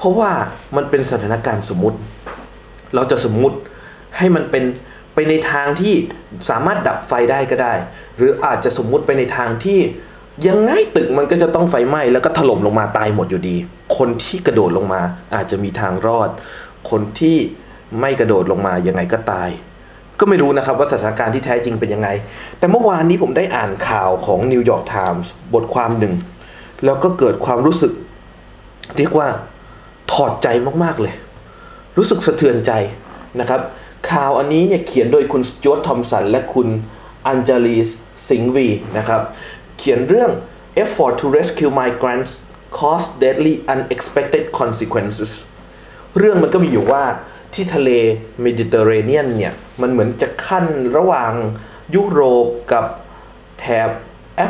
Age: 20-39